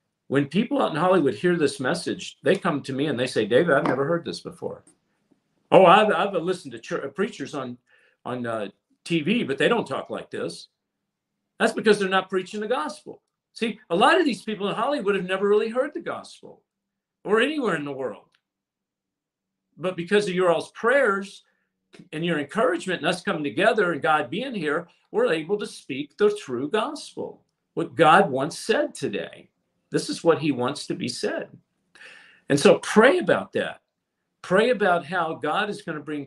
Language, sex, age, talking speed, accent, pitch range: English, male, 50-69, 190 wpm, American, 155-215 Hz